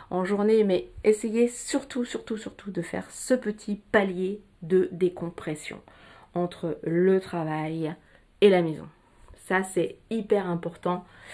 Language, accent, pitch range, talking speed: French, French, 170-210 Hz, 120 wpm